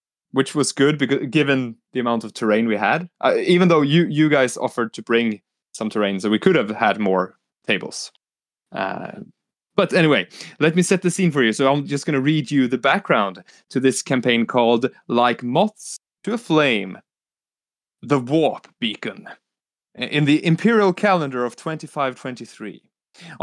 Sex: male